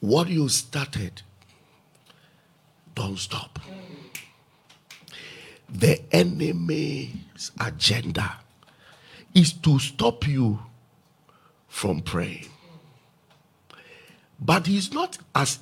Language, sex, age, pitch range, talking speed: English, male, 50-69, 115-160 Hz, 70 wpm